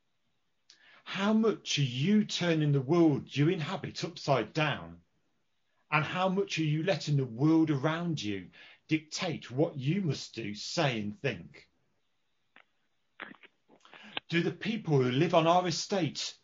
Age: 40-59